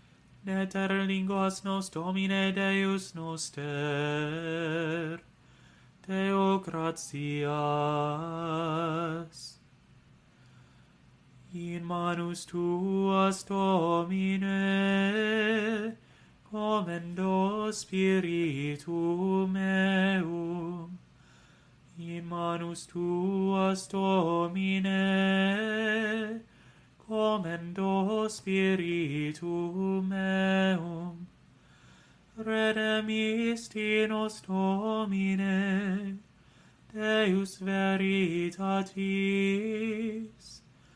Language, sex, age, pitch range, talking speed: English, male, 30-49, 175-205 Hz, 40 wpm